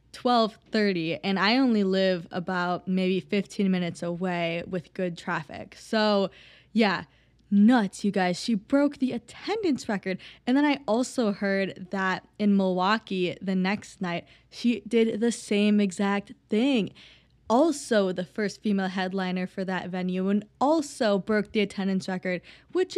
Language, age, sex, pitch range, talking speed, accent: English, 20-39, female, 185-220 Hz, 145 wpm, American